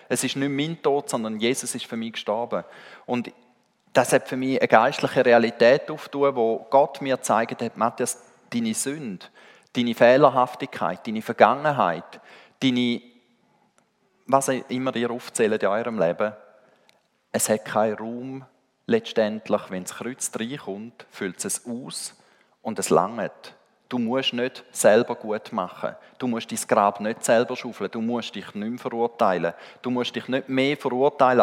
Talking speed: 155 wpm